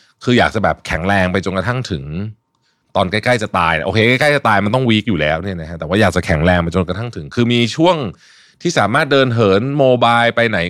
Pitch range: 95-125 Hz